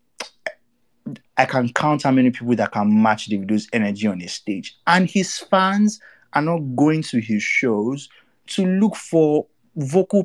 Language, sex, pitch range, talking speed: English, male, 120-170 Hz, 160 wpm